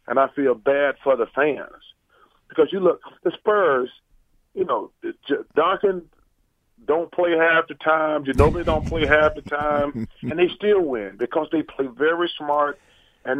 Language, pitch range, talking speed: English, 125-180 Hz, 170 wpm